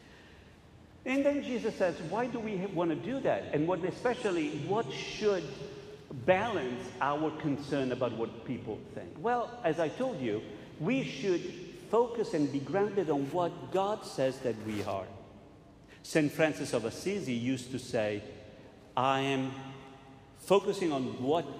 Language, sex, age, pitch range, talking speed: English, male, 50-69, 125-180 Hz, 145 wpm